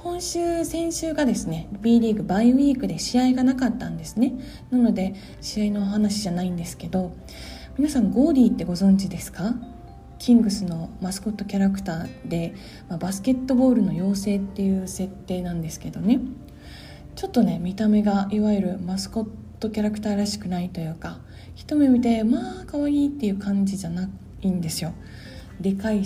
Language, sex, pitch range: Japanese, female, 185-245 Hz